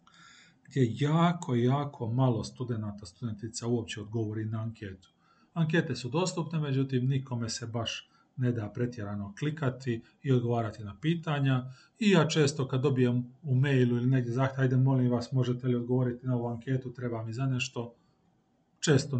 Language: Croatian